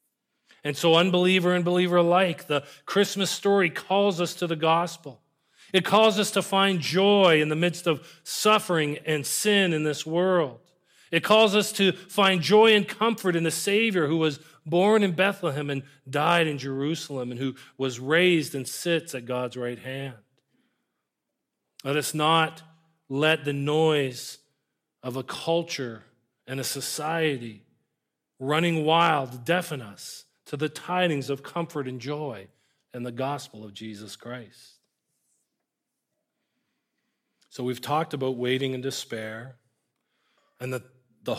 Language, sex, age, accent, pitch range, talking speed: English, male, 40-59, American, 125-170 Hz, 145 wpm